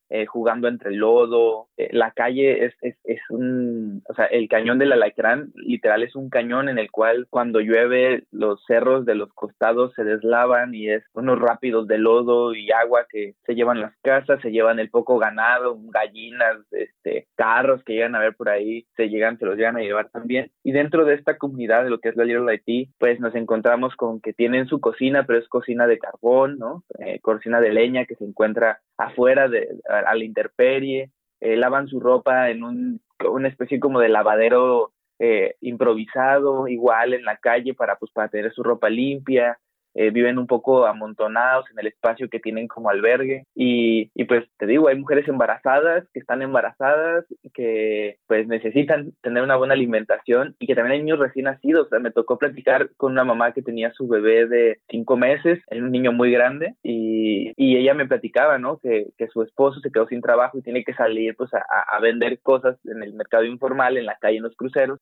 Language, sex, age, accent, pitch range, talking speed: Spanish, male, 20-39, Mexican, 115-135 Hz, 205 wpm